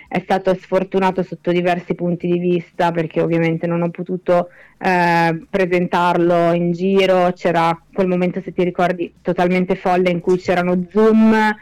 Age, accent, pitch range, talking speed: 20-39, native, 180-210 Hz, 150 wpm